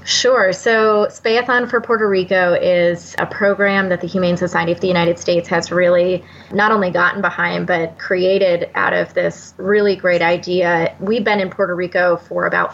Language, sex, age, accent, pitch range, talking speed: English, female, 20-39, American, 175-200 Hz, 180 wpm